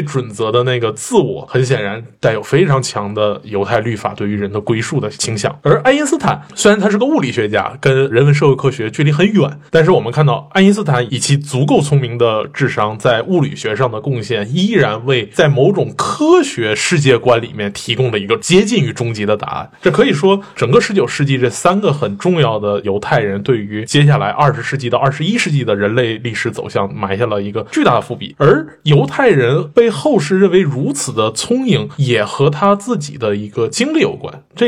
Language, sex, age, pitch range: Chinese, male, 20-39, 115-175 Hz